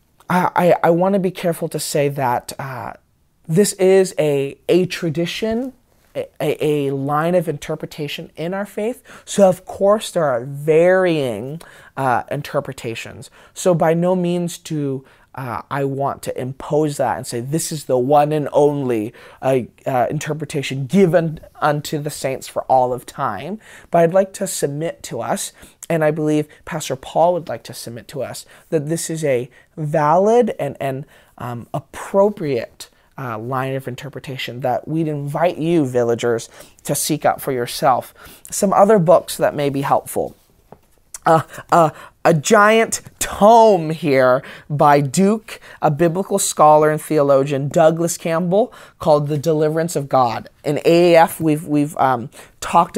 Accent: American